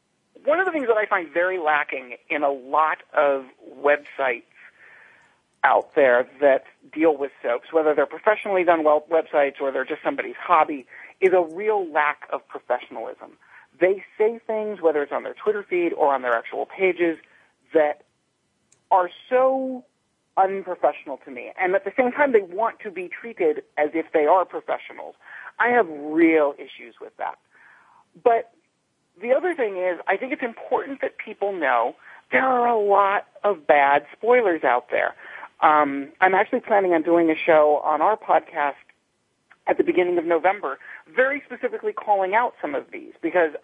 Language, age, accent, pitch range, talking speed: English, 40-59, American, 155-230 Hz, 170 wpm